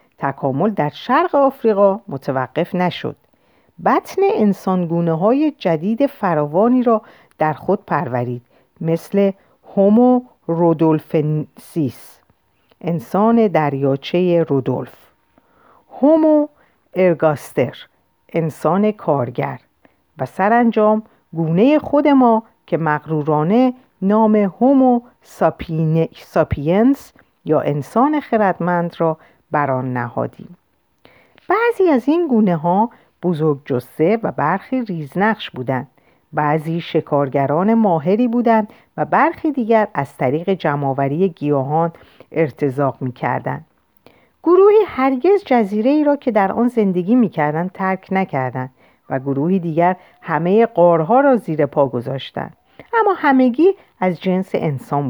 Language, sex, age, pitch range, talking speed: Persian, female, 50-69, 150-230 Hz, 95 wpm